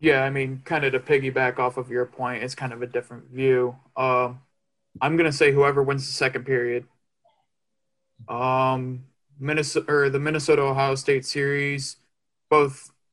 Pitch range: 130-140 Hz